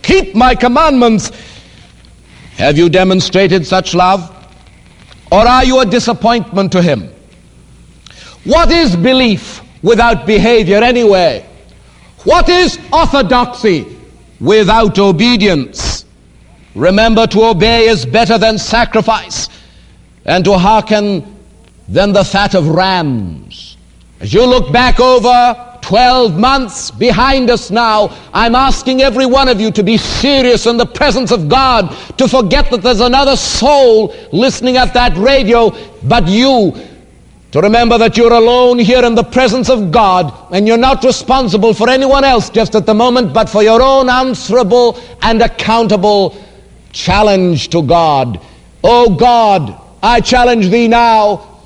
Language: English